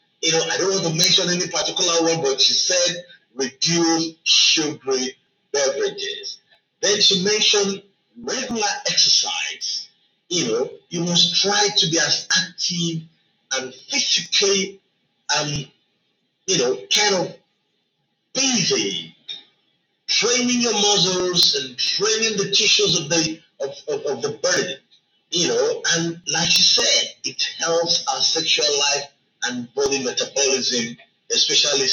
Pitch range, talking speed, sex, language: 165-235 Hz, 130 wpm, male, English